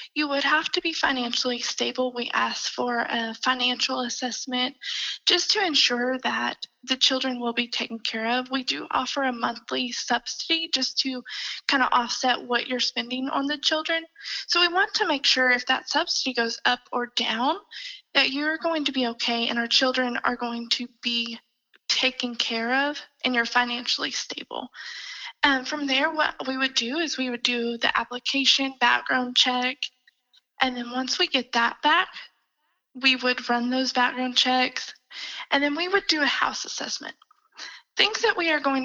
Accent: American